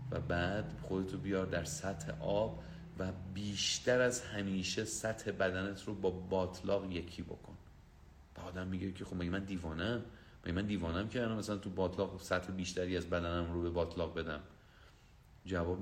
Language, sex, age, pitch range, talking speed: Persian, male, 40-59, 90-110 Hz, 155 wpm